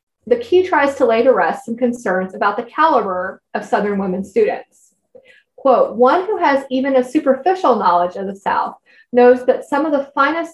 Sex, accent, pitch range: female, American, 200-265 Hz